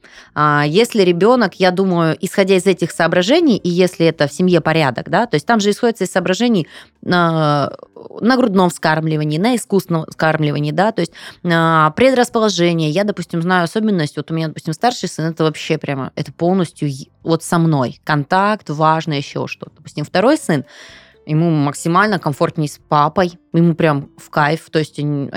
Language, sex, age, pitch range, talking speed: Russian, female, 20-39, 155-195 Hz, 165 wpm